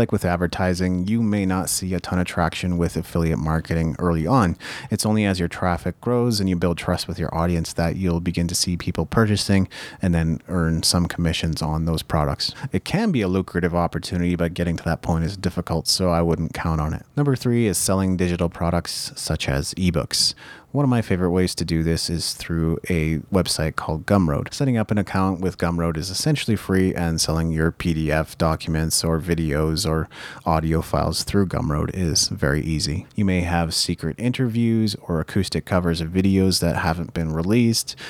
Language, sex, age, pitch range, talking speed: English, male, 30-49, 80-95 Hz, 195 wpm